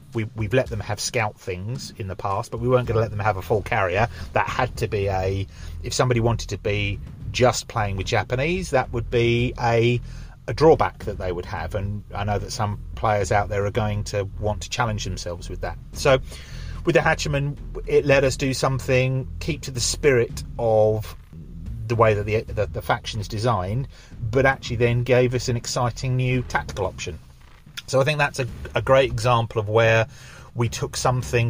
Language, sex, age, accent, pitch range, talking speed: English, male, 30-49, British, 100-120 Hz, 205 wpm